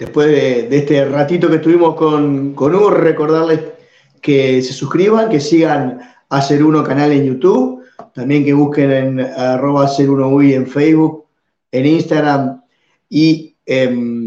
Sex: male